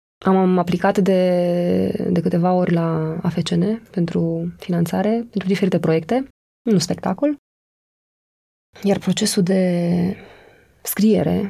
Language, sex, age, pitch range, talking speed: Romanian, female, 20-39, 170-215 Hz, 100 wpm